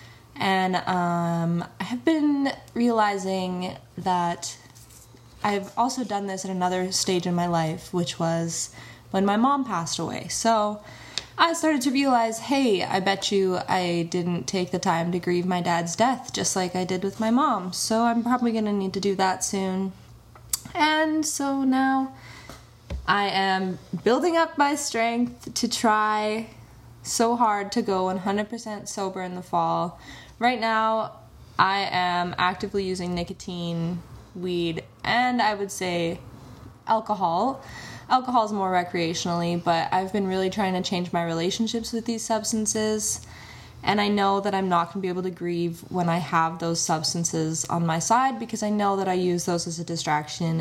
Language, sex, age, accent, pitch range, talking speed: English, female, 20-39, American, 170-220 Hz, 165 wpm